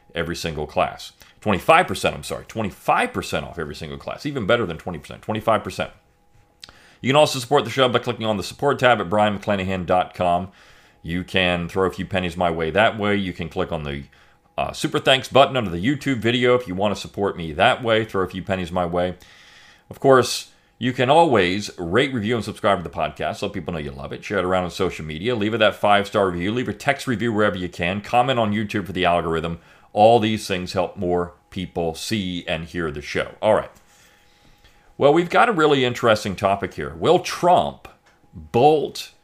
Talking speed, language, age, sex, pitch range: 205 wpm, English, 40-59, male, 90-120 Hz